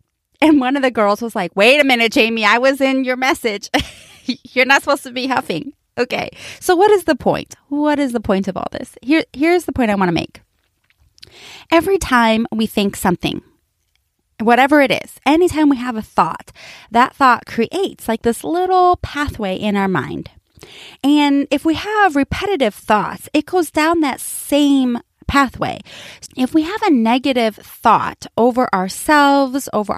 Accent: American